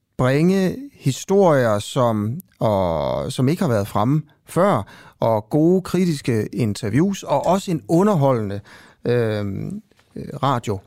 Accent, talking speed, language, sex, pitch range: native, 110 wpm, Danish, male, 115-155 Hz